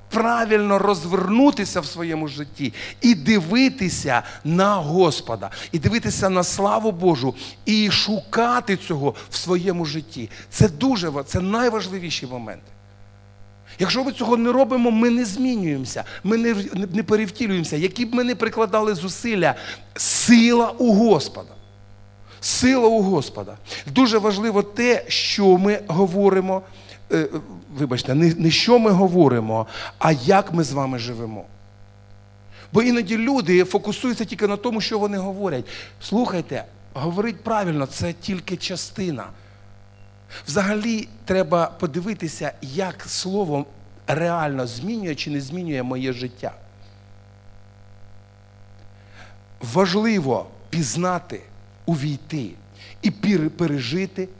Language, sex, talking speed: Russian, male, 110 wpm